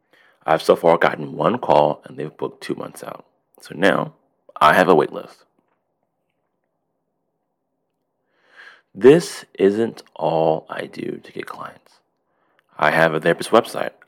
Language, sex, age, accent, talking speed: English, male, 30-49, American, 135 wpm